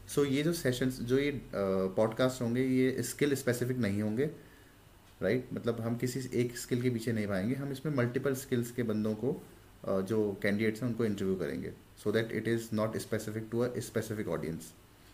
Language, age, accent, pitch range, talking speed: Hindi, 30-49, native, 100-125 Hz, 200 wpm